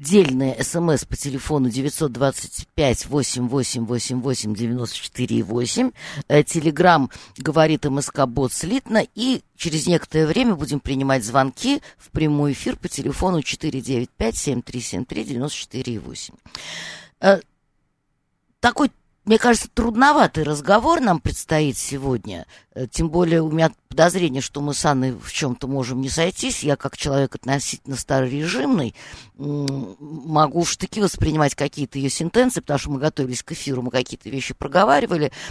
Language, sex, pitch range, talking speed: Russian, female, 135-180 Hz, 110 wpm